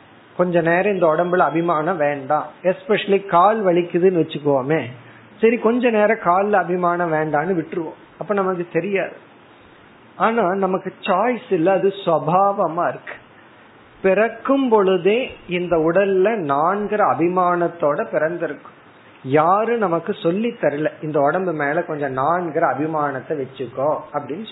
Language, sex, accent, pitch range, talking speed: Tamil, male, native, 155-200 Hz, 85 wpm